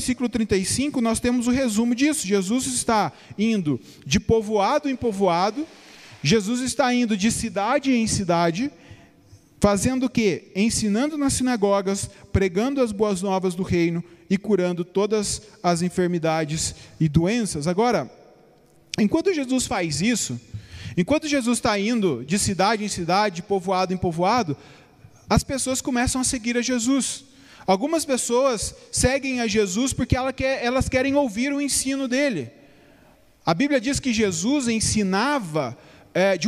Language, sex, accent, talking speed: Portuguese, male, Brazilian, 140 wpm